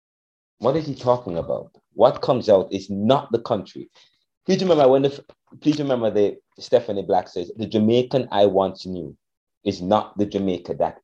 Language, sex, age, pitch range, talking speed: English, male, 30-49, 100-135 Hz, 180 wpm